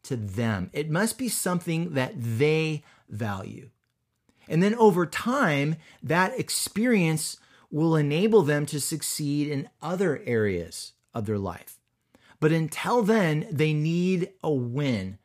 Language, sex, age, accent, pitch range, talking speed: English, male, 30-49, American, 120-160 Hz, 130 wpm